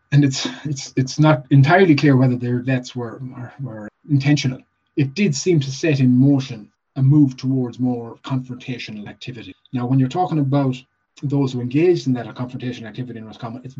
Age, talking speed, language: 30-49, 185 wpm, English